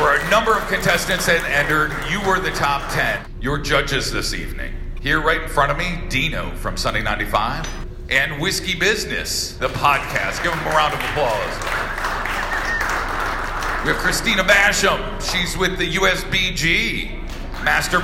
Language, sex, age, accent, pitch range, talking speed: English, male, 40-59, American, 135-190 Hz, 155 wpm